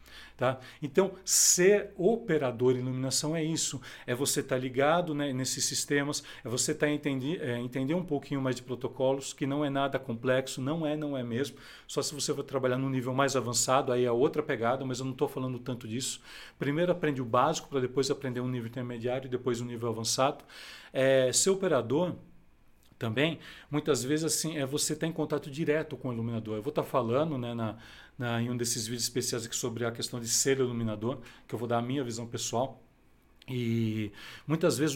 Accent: Brazilian